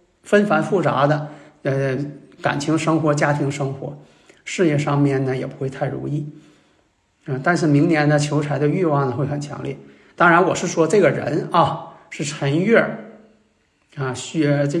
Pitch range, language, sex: 145-175 Hz, Chinese, male